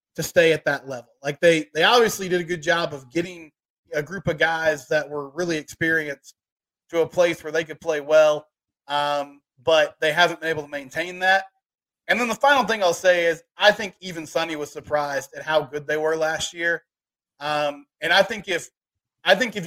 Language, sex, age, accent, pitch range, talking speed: English, male, 20-39, American, 150-175 Hz, 210 wpm